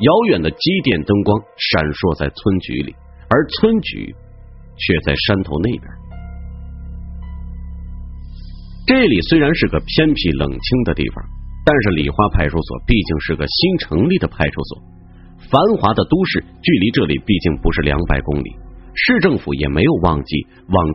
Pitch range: 75-115 Hz